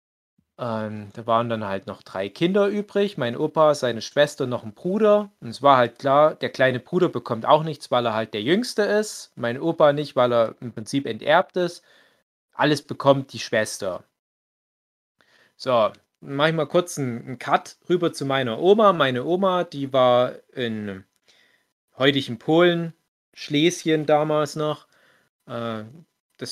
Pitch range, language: 120-155 Hz, German